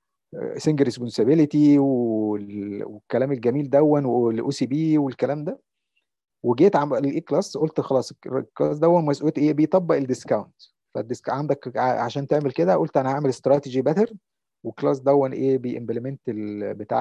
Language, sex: Arabic, male